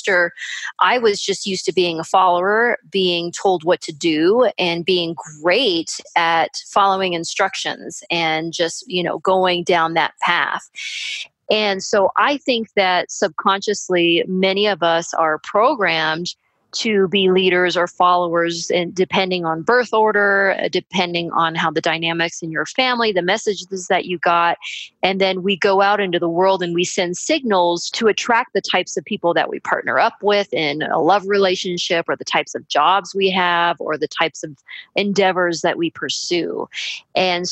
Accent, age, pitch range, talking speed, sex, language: American, 30-49, 170-195 Hz, 165 wpm, female, English